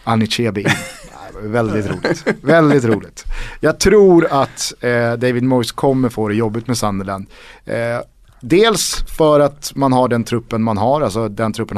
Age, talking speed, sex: 30-49, 145 wpm, male